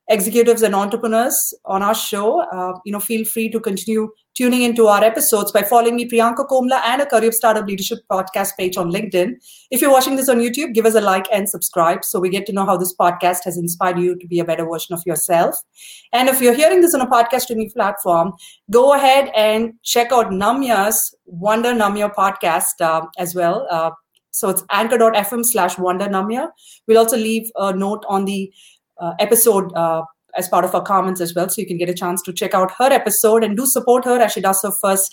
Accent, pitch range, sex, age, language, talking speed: Indian, 180-240 Hz, female, 30-49, English, 215 wpm